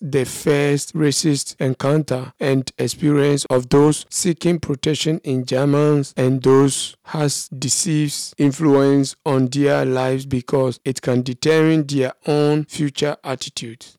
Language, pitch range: German, 130-155 Hz